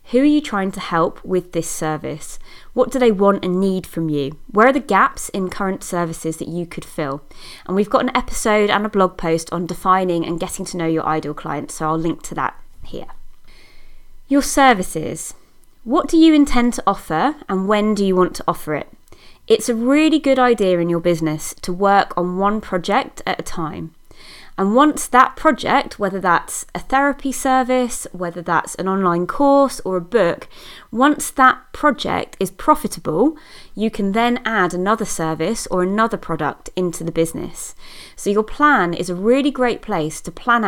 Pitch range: 175-245 Hz